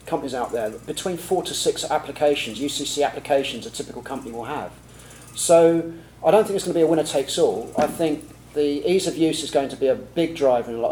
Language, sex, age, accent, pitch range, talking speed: English, male, 40-59, British, 125-150 Hz, 225 wpm